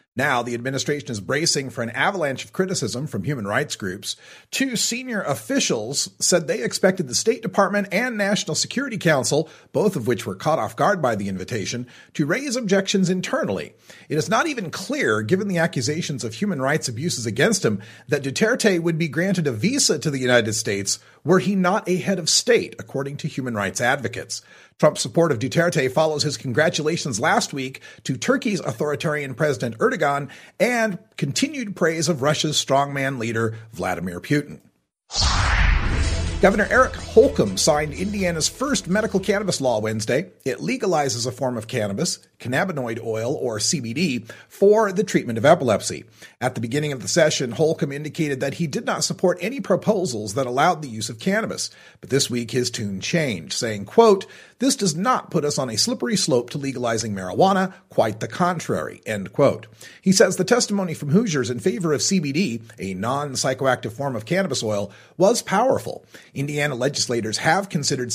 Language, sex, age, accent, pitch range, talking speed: English, male, 40-59, American, 125-190 Hz, 170 wpm